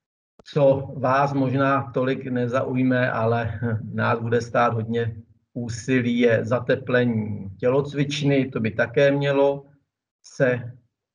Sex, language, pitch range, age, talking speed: male, Czech, 110-130 Hz, 50-69, 100 wpm